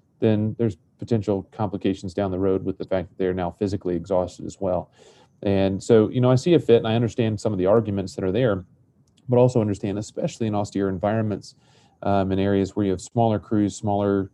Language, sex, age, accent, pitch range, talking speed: English, male, 30-49, American, 95-110 Hz, 215 wpm